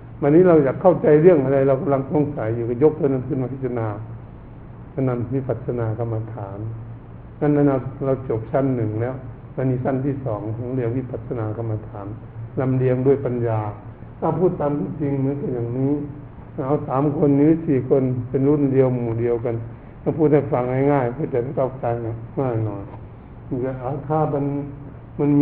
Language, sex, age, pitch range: Thai, male, 60-79, 120-140 Hz